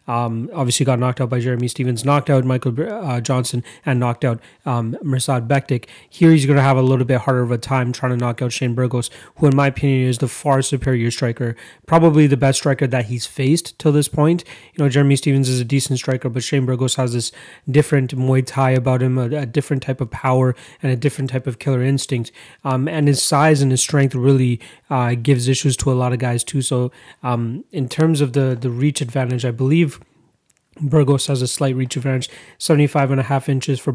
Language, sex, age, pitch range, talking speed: English, male, 30-49, 125-140 Hz, 225 wpm